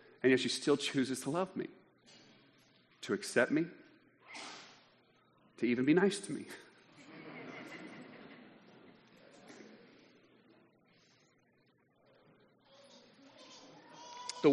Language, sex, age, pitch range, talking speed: English, male, 40-59, 120-150 Hz, 75 wpm